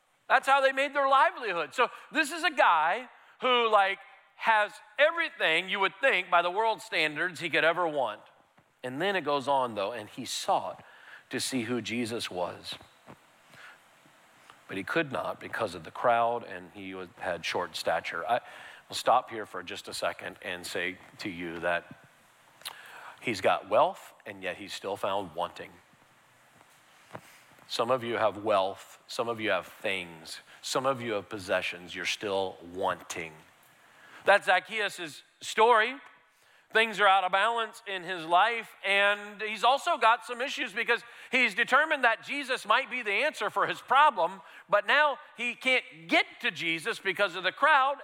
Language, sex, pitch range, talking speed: English, male, 140-235 Hz, 165 wpm